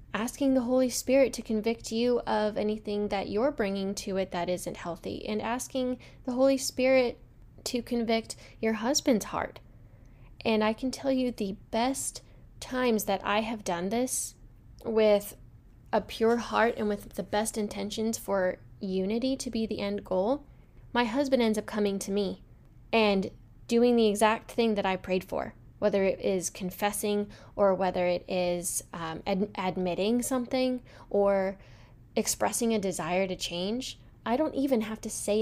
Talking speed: 160 wpm